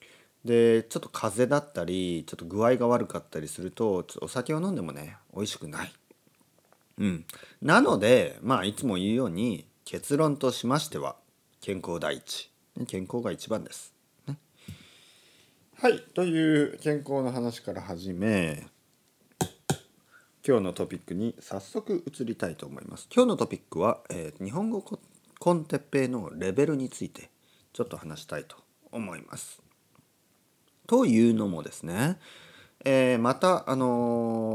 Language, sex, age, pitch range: Japanese, male, 40-59, 100-140 Hz